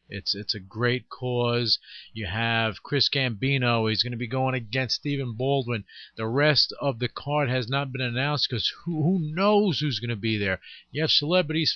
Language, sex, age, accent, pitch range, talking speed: English, male, 40-59, American, 110-140 Hz, 195 wpm